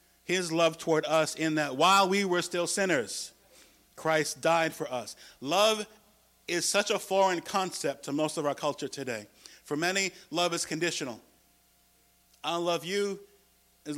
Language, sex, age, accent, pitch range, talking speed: English, male, 50-69, American, 160-200 Hz, 155 wpm